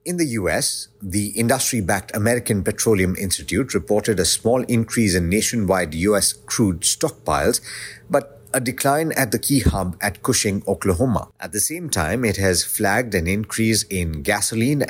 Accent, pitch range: Indian, 95-120 Hz